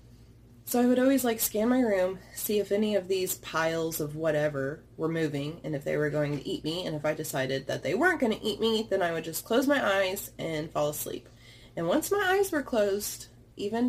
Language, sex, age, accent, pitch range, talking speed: English, female, 20-39, American, 120-200 Hz, 235 wpm